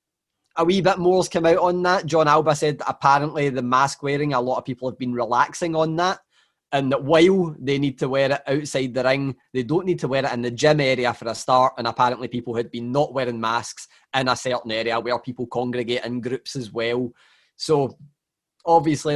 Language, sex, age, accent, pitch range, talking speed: English, male, 20-39, British, 130-160 Hz, 215 wpm